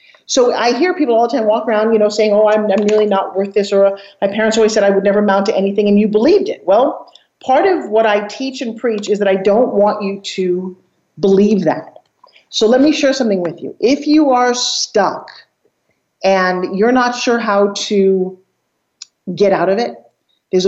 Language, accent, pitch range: English, American, 190-235 Hz